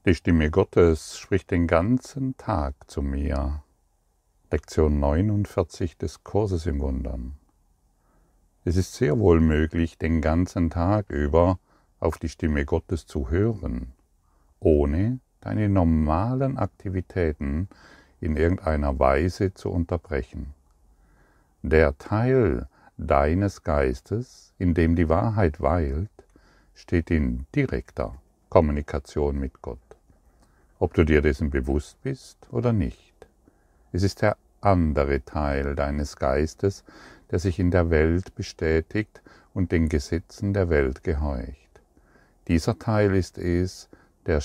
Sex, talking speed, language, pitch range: male, 115 wpm, German, 75-95 Hz